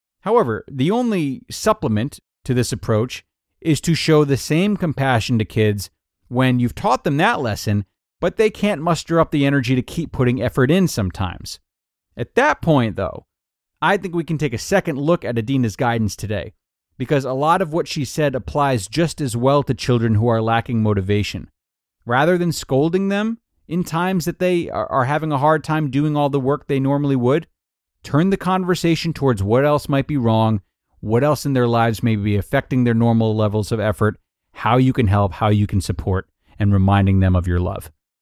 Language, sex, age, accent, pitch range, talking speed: English, male, 30-49, American, 105-145 Hz, 195 wpm